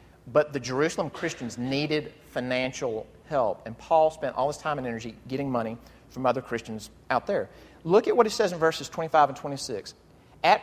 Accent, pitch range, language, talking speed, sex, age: American, 125-165 Hz, English, 185 wpm, male, 40-59